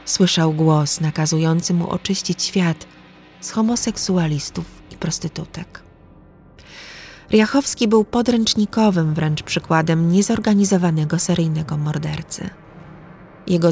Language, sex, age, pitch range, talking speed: Polish, female, 30-49, 155-190 Hz, 85 wpm